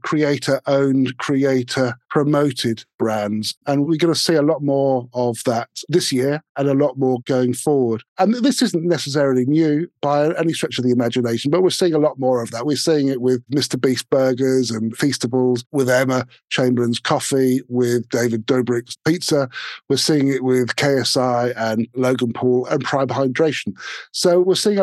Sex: male